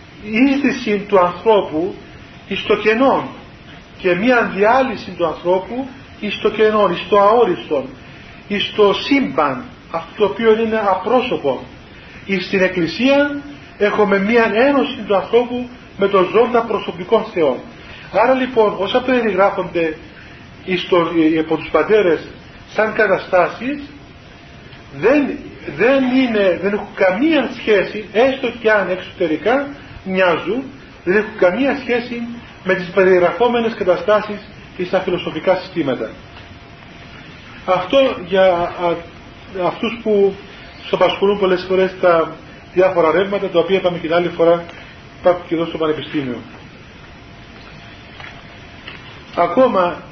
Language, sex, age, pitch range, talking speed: Greek, male, 40-59, 175-220 Hz, 105 wpm